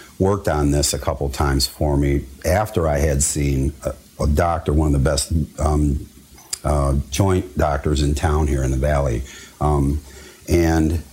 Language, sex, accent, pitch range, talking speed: English, male, American, 70-85 Hz, 165 wpm